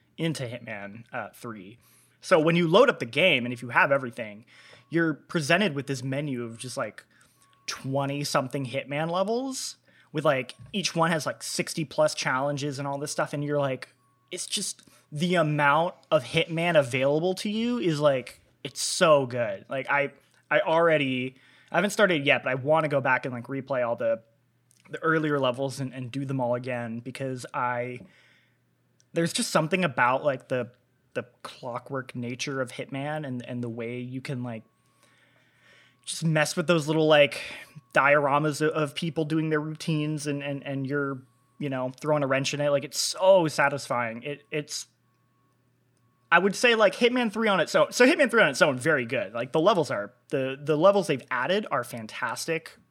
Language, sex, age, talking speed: English, male, 20-39, 185 wpm